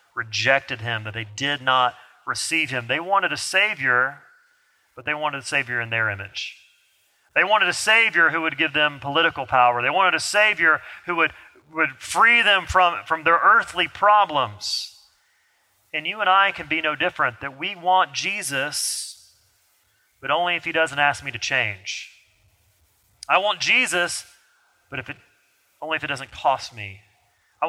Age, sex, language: 30-49, male, English